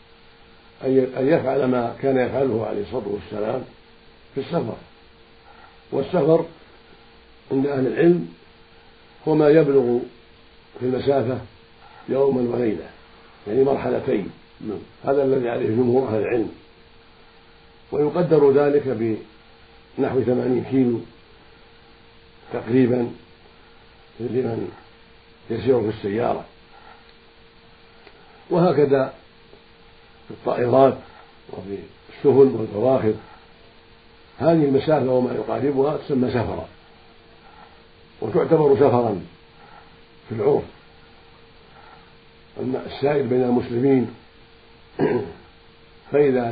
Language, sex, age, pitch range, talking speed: Arabic, male, 50-69, 115-135 Hz, 80 wpm